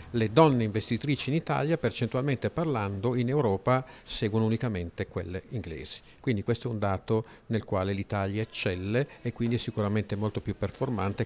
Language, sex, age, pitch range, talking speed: Italian, male, 50-69, 100-125 Hz, 155 wpm